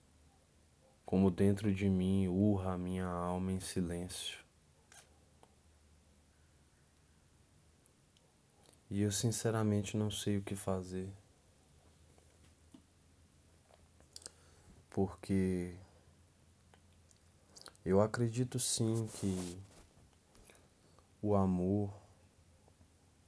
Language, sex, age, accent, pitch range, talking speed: Portuguese, male, 20-39, Brazilian, 85-100 Hz, 65 wpm